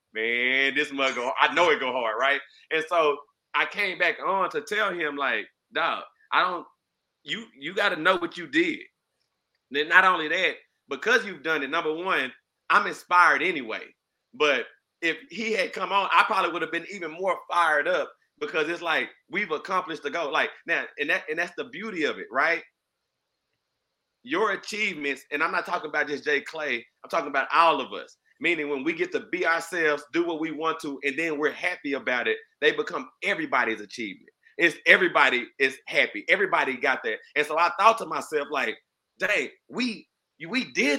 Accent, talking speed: American, 195 wpm